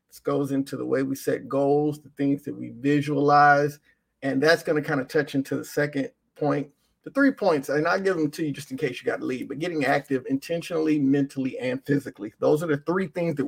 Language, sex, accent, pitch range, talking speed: English, male, American, 145-230 Hz, 230 wpm